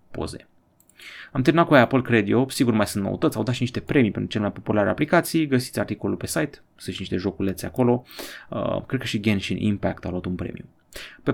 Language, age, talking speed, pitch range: Romanian, 30-49, 210 wpm, 100-130 Hz